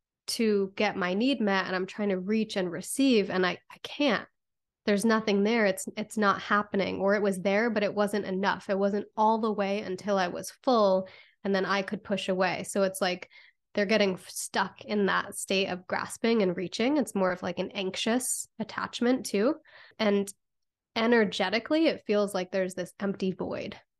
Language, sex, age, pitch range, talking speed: English, female, 20-39, 190-220 Hz, 190 wpm